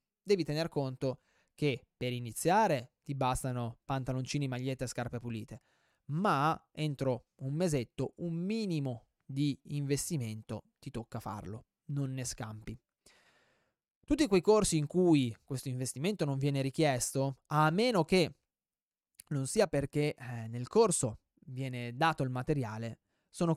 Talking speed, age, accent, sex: 125 wpm, 20-39, native, male